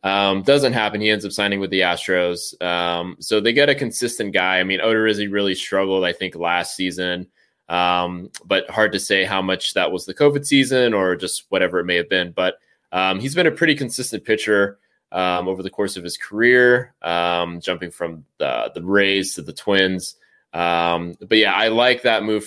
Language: English